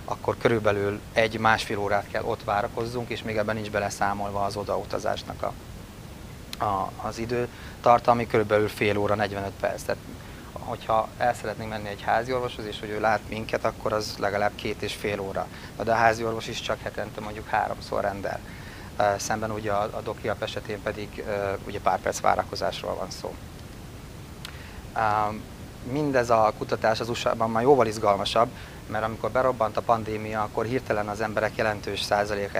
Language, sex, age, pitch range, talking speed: Hungarian, male, 30-49, 100-115 Hz, 160 wpm